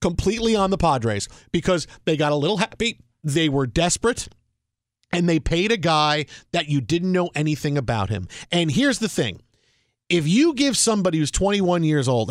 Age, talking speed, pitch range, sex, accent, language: 40-59, 180 wpm, 150-215 Hz, male, American, English